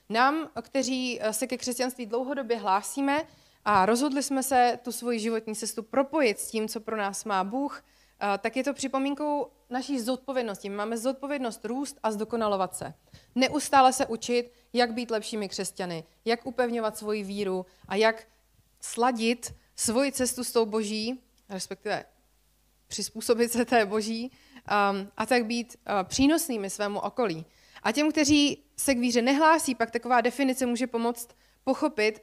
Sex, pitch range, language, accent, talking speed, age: female, 205-255 Hz, Czech, native, 145 wpm, 30-49